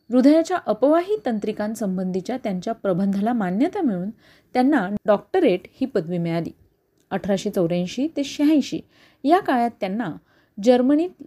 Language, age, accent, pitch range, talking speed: Marathi, 30-49, native, 200-275 Hz, 105 wpm